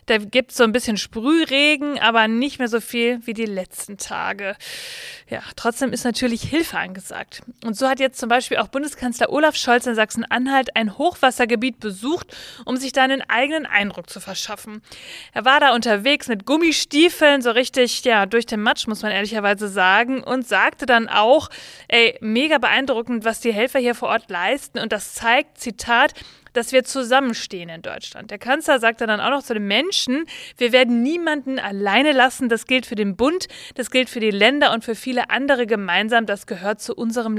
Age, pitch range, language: 30-49, 215-270 Hz, German